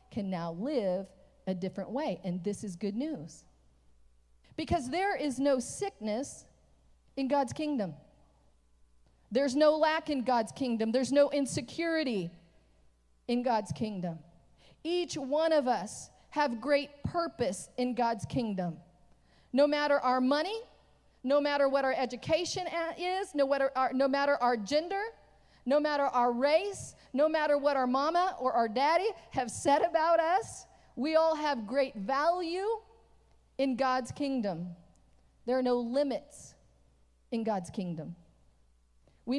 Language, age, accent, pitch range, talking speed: English, 40-59, American, 185-285 Hz, 135 wpm